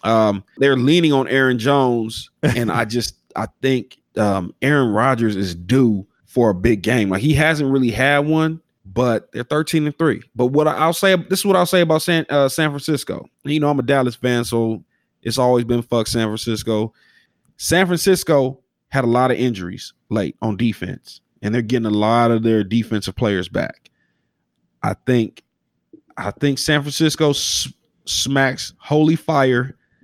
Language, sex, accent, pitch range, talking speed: English, male, American, 115-150 Hz, 175 wpm